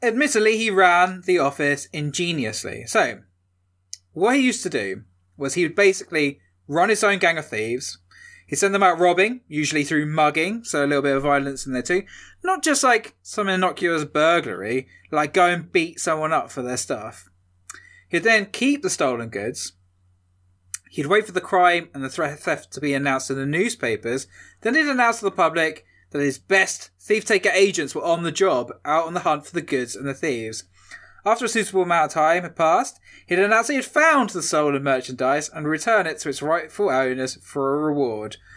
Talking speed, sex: 195 wpm, male